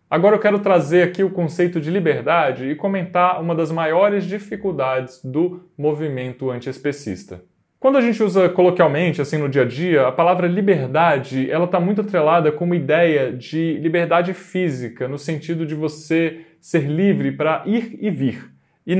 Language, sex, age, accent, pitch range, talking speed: Portuguese, male, 20-39, Brazilian, 130-175 Hz, 160 wpm